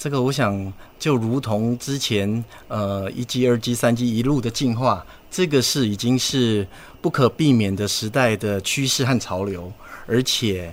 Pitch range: 100-130 Hz